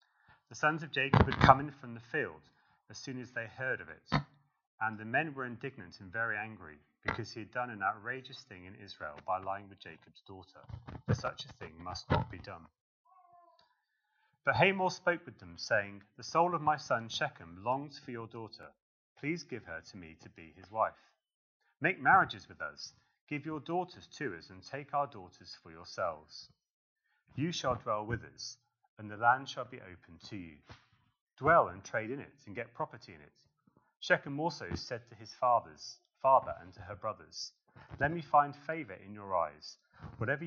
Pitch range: 95-140 Hz